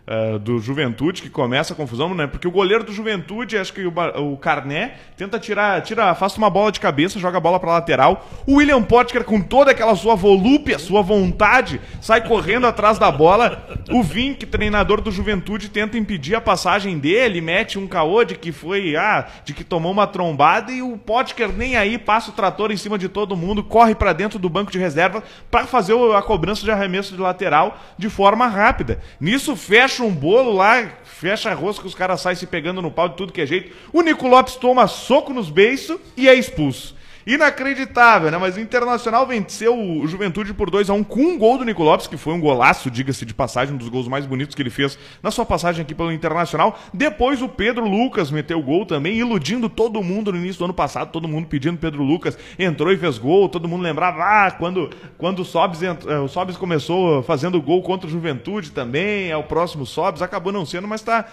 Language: Portuguese